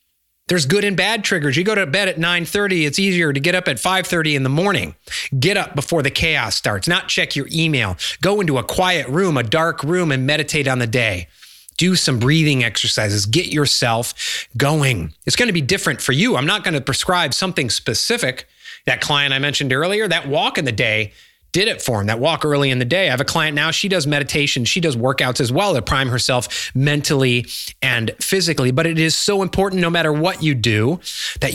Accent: American